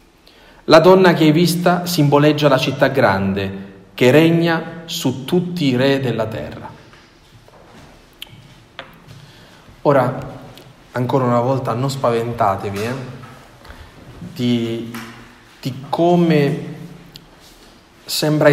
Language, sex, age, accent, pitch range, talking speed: Italian, male, 40-59, native, 120-145 Hz, 90 wpm